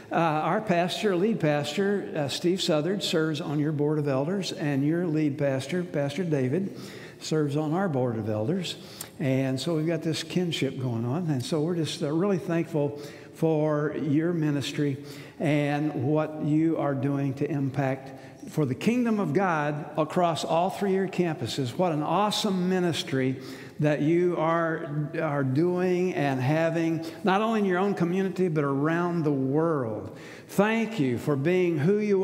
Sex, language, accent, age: male, English, American, 60-79